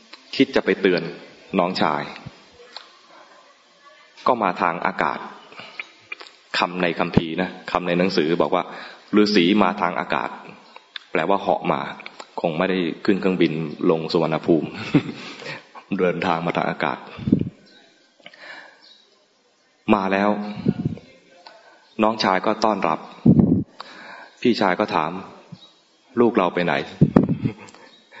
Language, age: English, 20-39